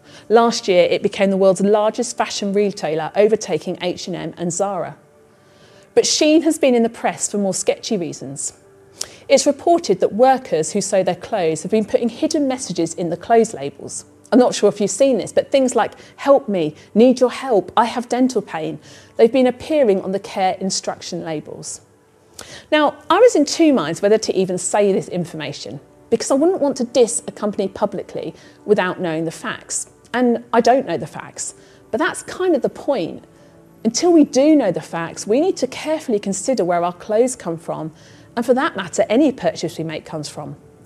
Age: 40-59